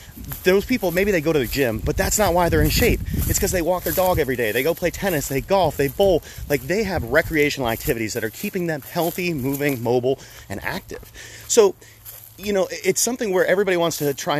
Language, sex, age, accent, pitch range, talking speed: English, male, 30-49, American, 125-180 Hz, 230 wpm